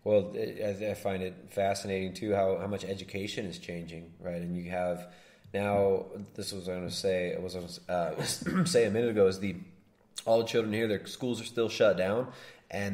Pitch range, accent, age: 90-105 Hz, American, 20-39